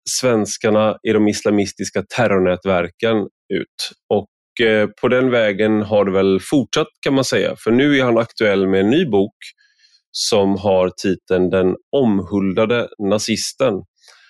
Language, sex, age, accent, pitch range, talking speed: Swedish, male, 30-49, native, 95-120 Hz, 135 wpm